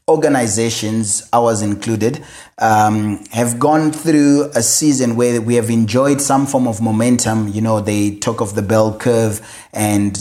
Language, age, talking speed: English, 30-49, 155 wpm